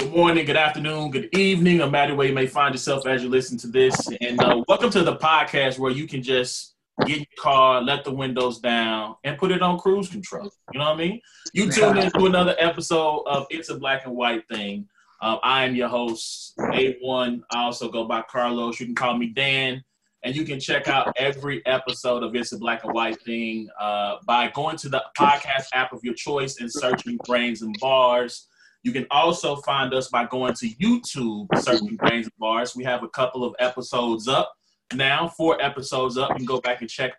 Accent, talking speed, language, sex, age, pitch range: American, 215 wpm, English, male, 20-39, 120-160 Hz